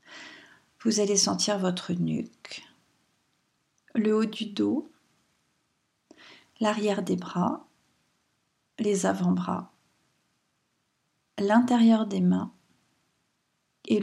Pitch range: 200-245 Hz